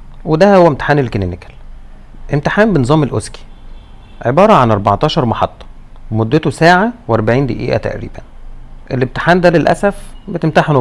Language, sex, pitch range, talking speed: Arabic, male, 100-145 Hz, 120 wpm